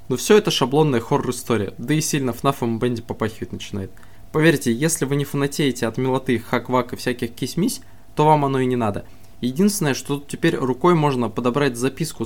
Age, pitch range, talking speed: 20-39, 110-140 Hz, 185 wpm